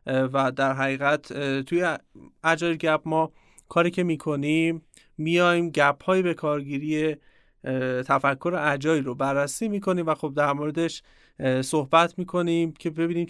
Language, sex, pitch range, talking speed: Persian, male, 145-175 Hz, 120 wpm